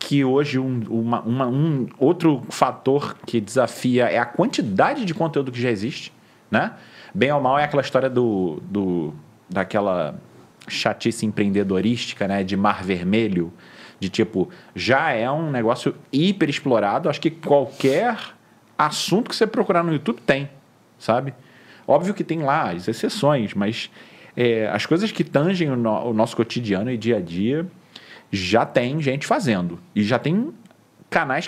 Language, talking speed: Portuguese, 155 wpm